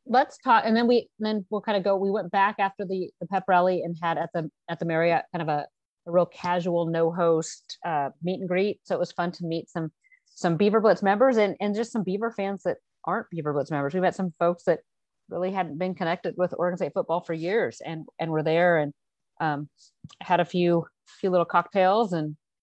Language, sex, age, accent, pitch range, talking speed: English, female, 30-49, American, 160-190 Hz, 230 wpm